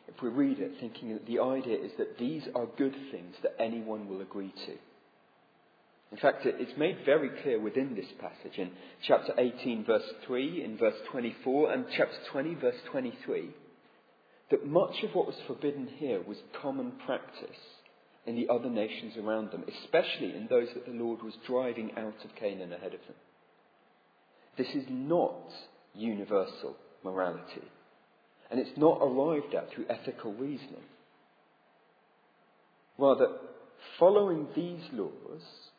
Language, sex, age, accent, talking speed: English, male, 40-59, British, 150 wpm